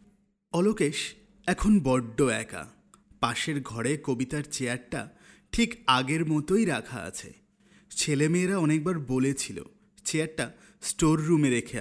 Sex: male